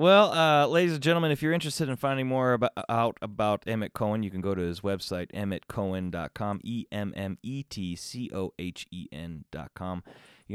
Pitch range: 100-135 Hz